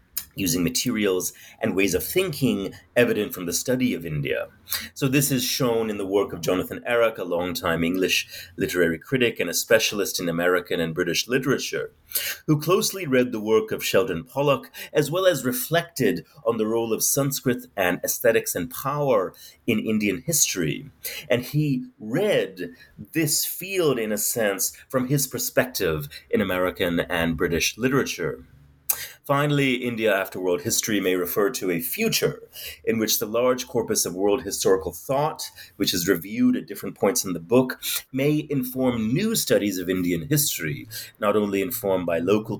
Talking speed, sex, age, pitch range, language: 160 wpm, male, 30-49, 100-140 Hz, English